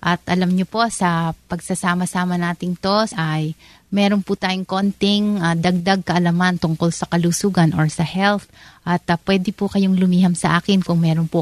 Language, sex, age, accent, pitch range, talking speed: Filipino, female, 30-49, native, 175-200 Hz, 165 wpm